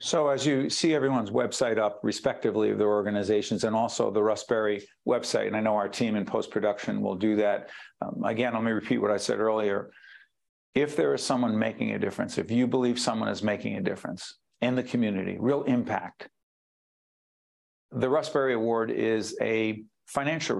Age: 50-69